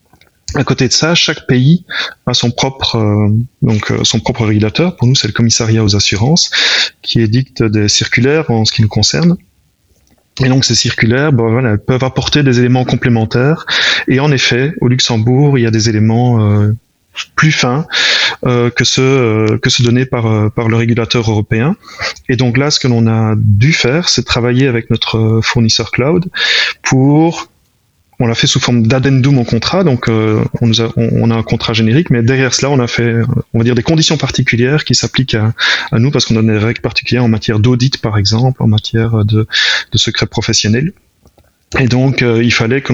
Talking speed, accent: 185 wpm, French